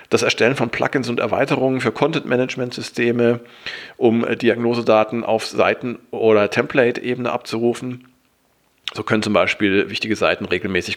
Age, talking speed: 40-59, 120 wpm